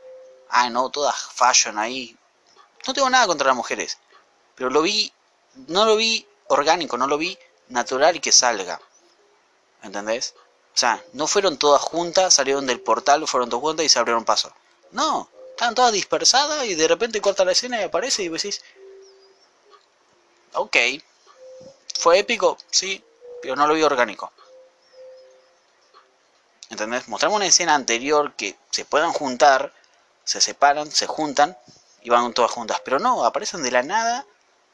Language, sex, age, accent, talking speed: Spanish, male, 20-39, Argentinian, 150 wpm